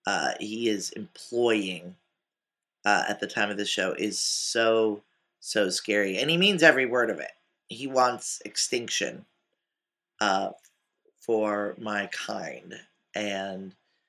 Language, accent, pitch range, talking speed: English, American, 110-135 Hz, 130 wpm